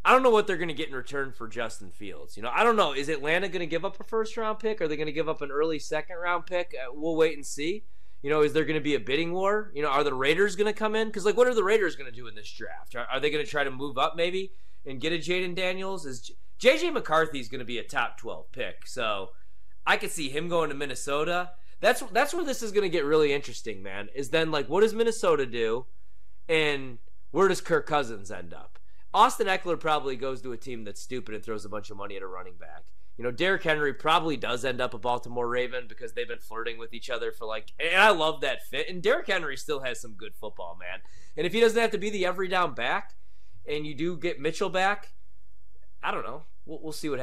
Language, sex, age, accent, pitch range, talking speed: English, male, 30-49, American, 120-190 Hz, 265 wpm